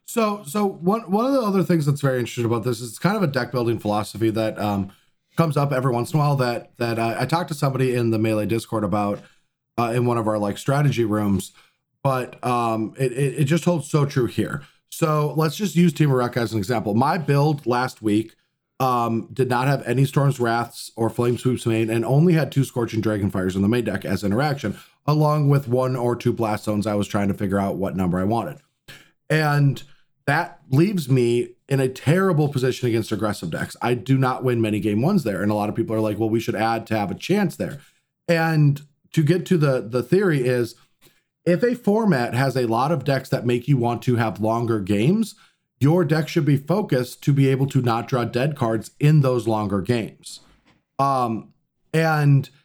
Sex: male